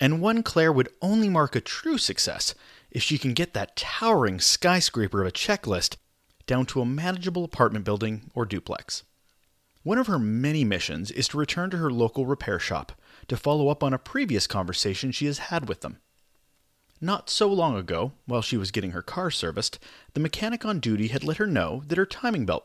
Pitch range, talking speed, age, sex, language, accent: 115-180 Hz, 200 wpm, 30-49, male, English, American